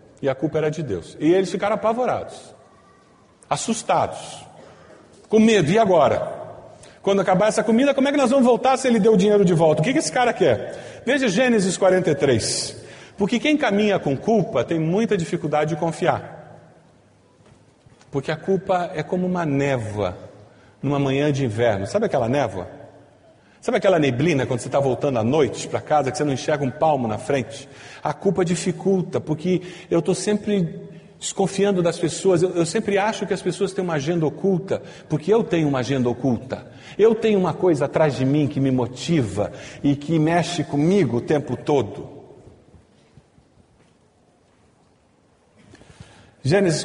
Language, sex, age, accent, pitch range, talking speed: Portuguese, male, 40-59, Brazilian, 140-195 Hz, 165 wpm